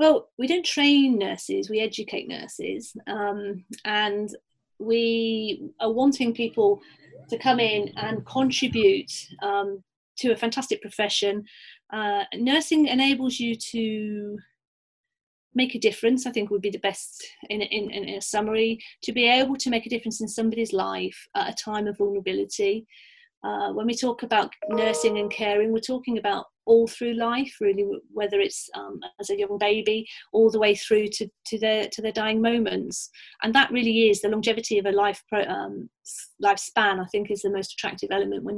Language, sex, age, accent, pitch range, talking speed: English, female, 40-59, British, 205-235 Hz, 175 wpm